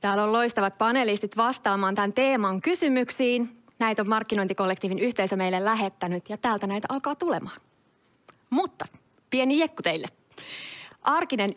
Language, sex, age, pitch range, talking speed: Finnish, female, 30-49, 190-265 Hz, 125 wpm